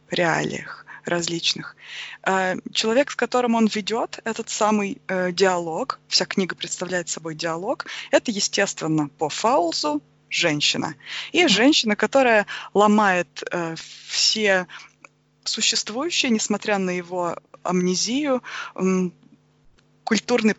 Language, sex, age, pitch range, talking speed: Russian, female, 20-39, 180-230 Hz, 90 wpm